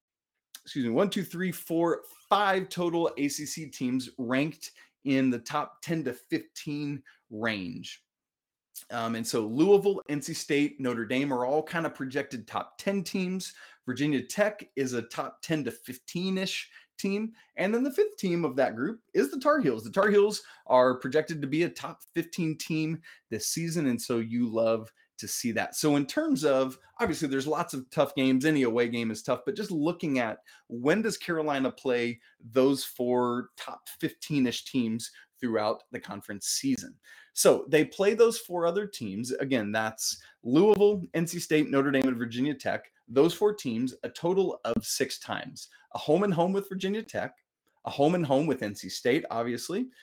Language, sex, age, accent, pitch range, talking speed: English, male, 30-49, American, 125-190 Hz, 180 wpm